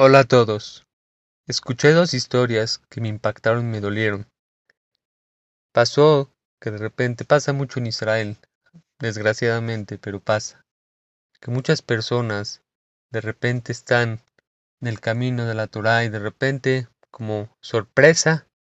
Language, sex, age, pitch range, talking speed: Spanish, male, 30-49, 105-130 Hz, 130 wpm